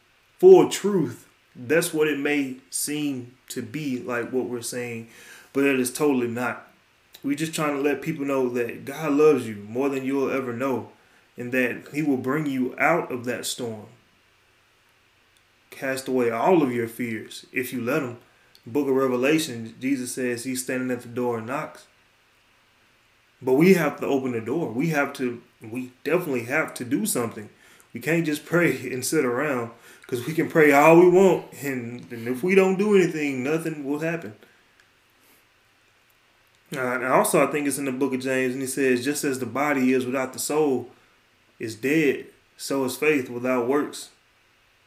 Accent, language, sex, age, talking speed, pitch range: American, English, male, 20-39, 180 wpm, 120-150 Hz